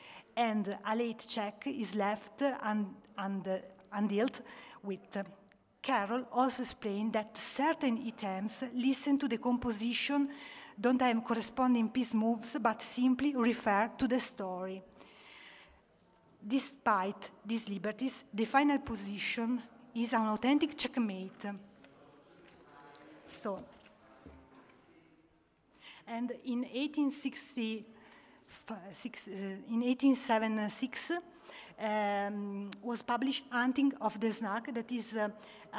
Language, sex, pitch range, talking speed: Italian, female, 210-250 Hz, 100 wpm